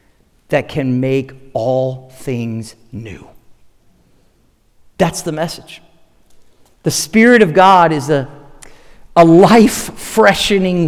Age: 40-59